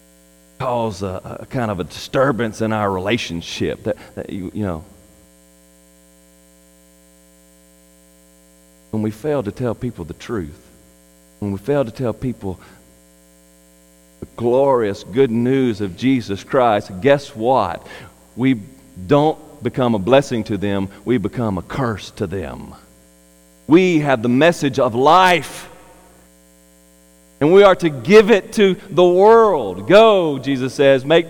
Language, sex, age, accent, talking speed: English, male, 40-59, American, 135 wpm